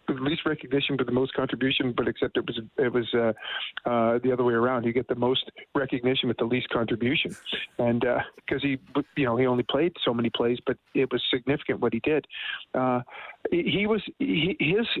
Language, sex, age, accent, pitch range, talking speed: English, male, 40-59, American, 120-140 Hz, 210 wpm